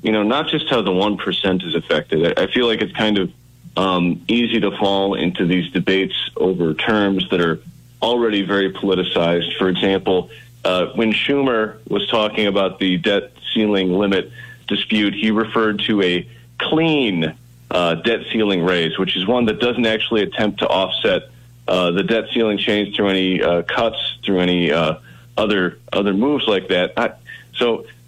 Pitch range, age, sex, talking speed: 90-115 Hz, 40-59, male, 170 wpm